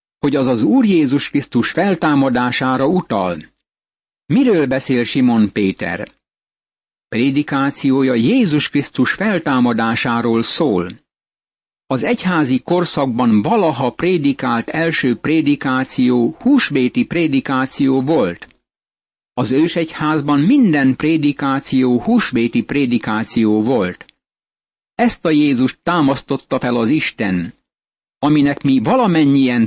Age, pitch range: 60-79, 125-160 Hz